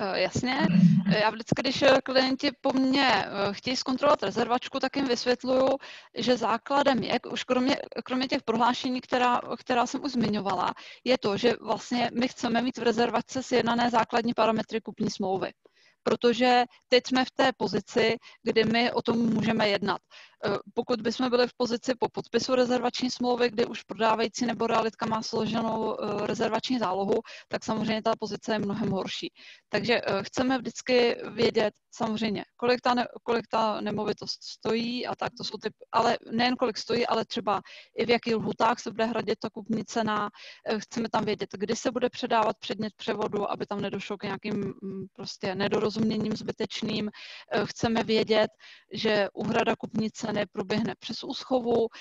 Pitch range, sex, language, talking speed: 210-245 Hz, female, Czech, 155 wpm